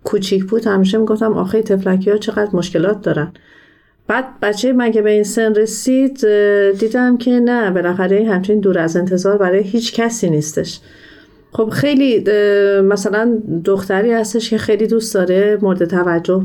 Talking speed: 155 wpm